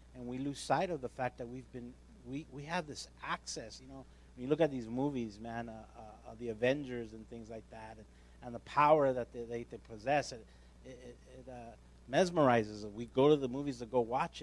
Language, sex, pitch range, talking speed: English, male, 105-135 Hz, 235 wpm